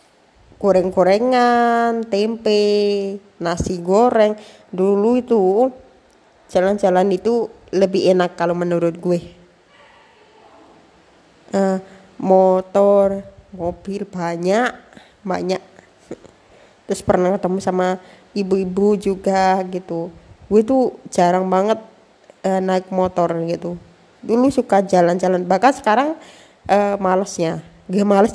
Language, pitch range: Indonesian, 180-215 Hz